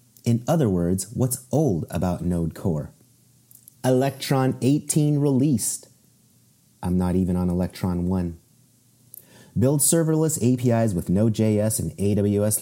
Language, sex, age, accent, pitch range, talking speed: English, male, 30-49, American, 90-125 Hz, 115 wpm